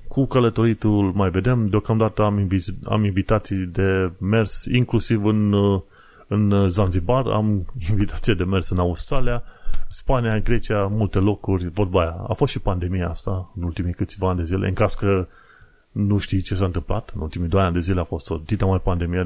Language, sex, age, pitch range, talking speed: Romanian, male, 30-49, 95-115 Hz, 180 wpm